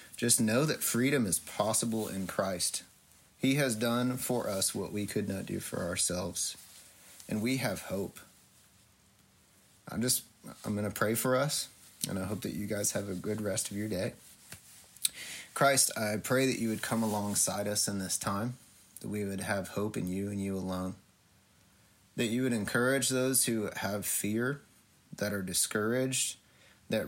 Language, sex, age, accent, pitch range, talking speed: English, male, 30-49, American, 95-115 Hz, 175 wpm